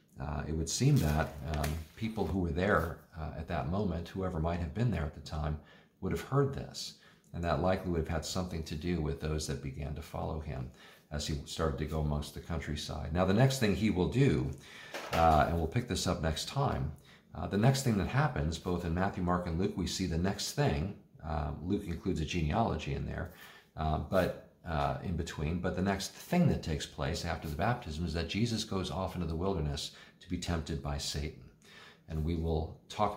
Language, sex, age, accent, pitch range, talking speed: English, male, 40-59, American, 75-105 Hz, 220 wpm